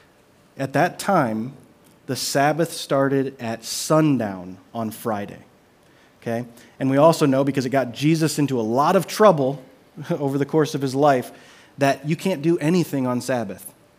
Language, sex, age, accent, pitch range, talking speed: English, male, 30-49, American, 120-150 Hz, 160 wpm